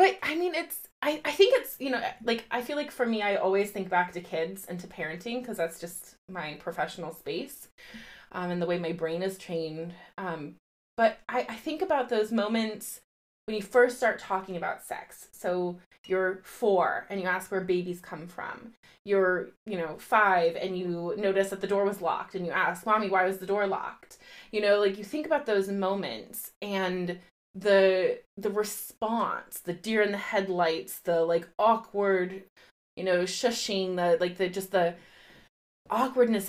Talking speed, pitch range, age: 185 wpm, 170-215 Hz, 20-39